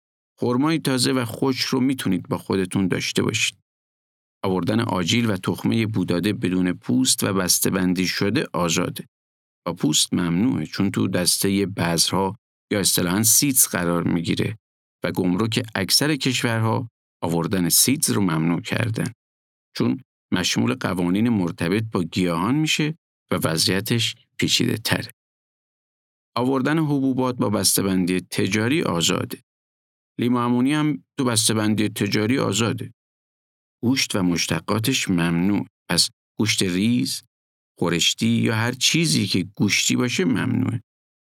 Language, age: Persian, 50-69